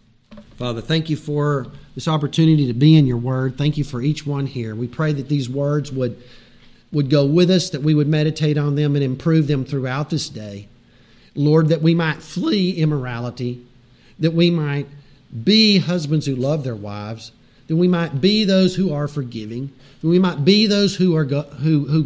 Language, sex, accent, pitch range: English, male, American, 120-150 Hz